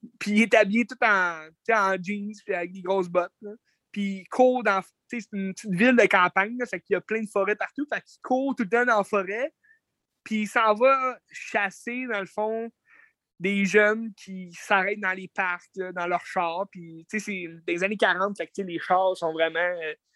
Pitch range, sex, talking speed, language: 190-240 Hz, male, 215 wpm, French